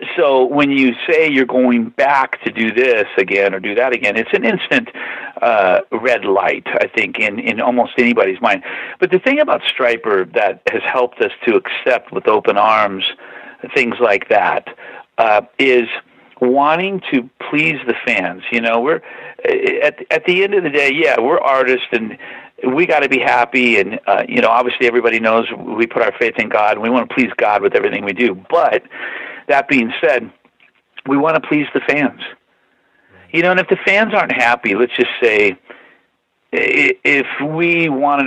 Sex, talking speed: male, 185 wpm